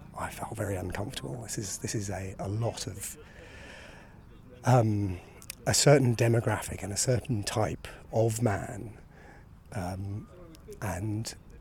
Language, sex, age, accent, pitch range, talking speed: English, male, 30-49, British, 105-145 Hz, 125 wpm